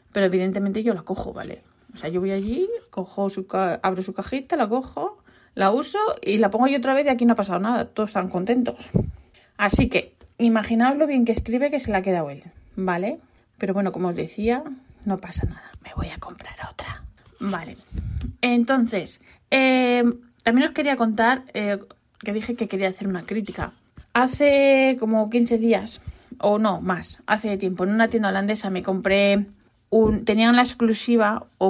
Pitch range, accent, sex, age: 195-235 Hz, Spanish, female, 20-39